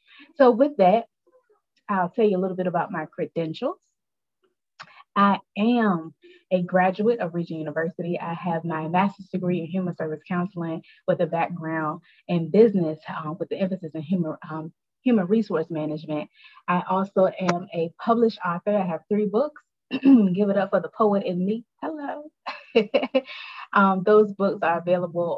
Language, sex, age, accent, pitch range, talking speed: English, female, 20-39, American, 170-210 Hz, 155 wpm